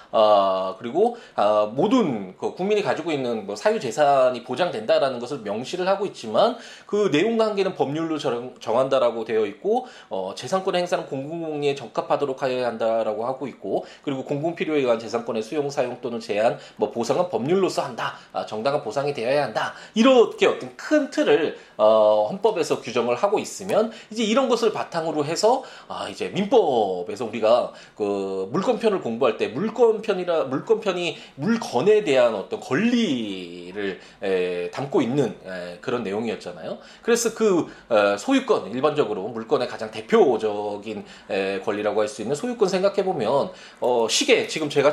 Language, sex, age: Korean, male, 20-39